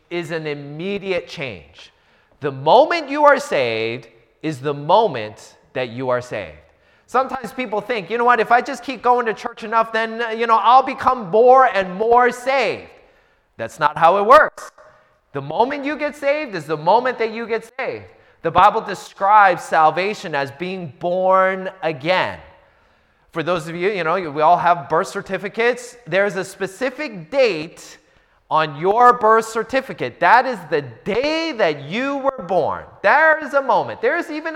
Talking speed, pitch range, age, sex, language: 170 wpm, 170-255 Hz, 30-49, male, English